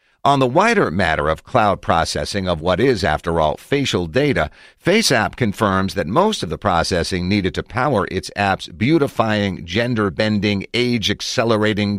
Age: 50-69